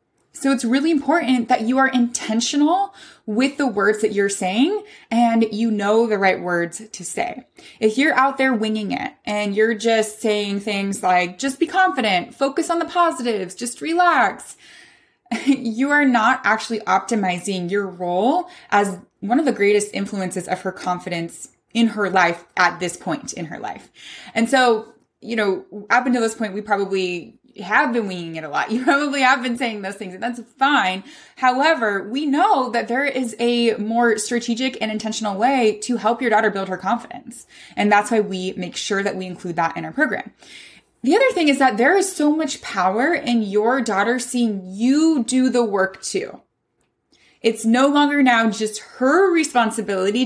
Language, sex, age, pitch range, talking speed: English, female, 20-39, 200-260 Hz, 180 wpm